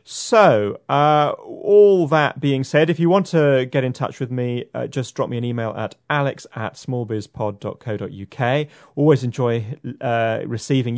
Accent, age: British, 30-49